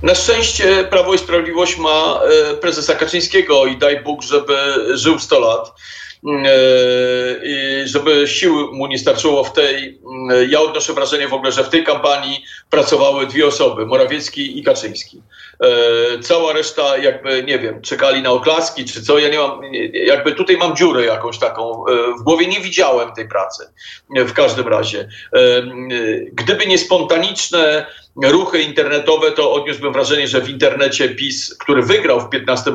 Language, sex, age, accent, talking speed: Polish, male, 50-69, native, 150 wpm